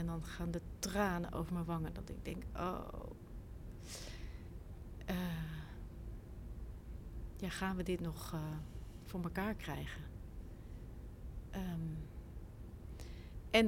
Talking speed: 100 wpm